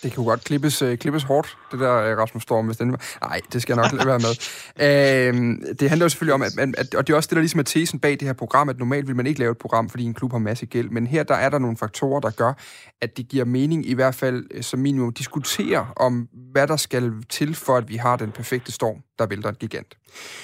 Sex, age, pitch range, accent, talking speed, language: male, 30-49, 115-140 Hz, native, 260 wpm, Danish